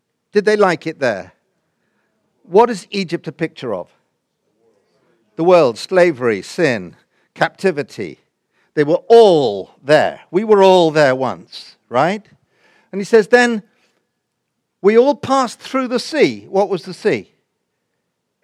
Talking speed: 130 wpm